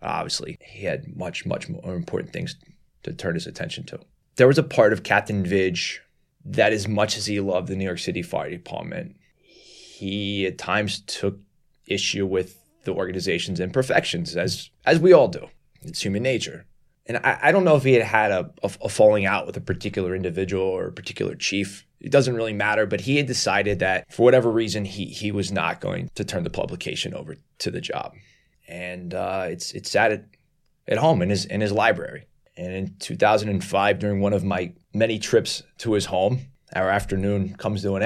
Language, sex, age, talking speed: English, male, 20-39, 200 wpm